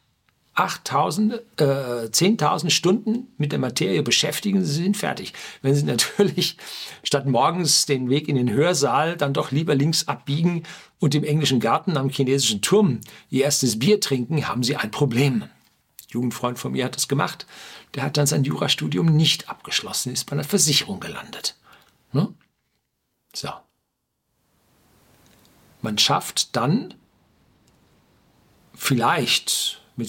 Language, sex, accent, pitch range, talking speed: German, male, German, 120-165 Hz, 130 wpm